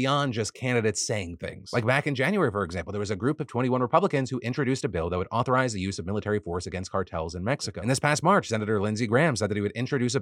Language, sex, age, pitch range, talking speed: English, male, 30-49, 105-140 Hz, 275 wpm